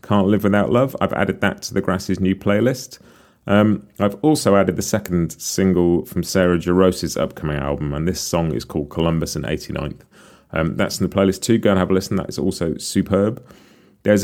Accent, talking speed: British, 200 wpm